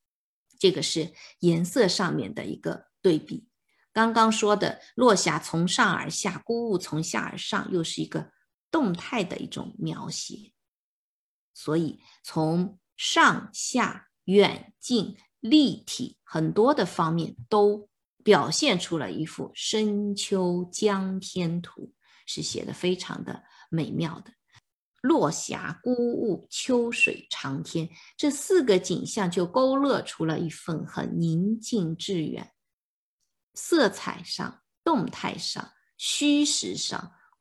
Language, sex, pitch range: Chinese, female, 170-235 Hz